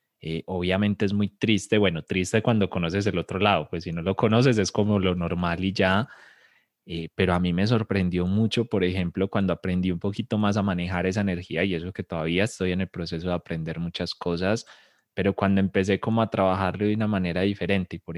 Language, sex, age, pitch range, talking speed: Spanish, male, 20-39, 90-110 Hz, 210 wpm